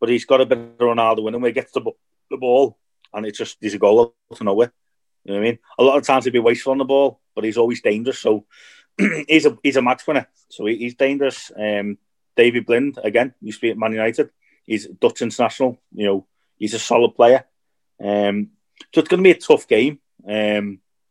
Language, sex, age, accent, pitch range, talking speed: English, male, 30-49, British, 105-140 Hz, 225 wpm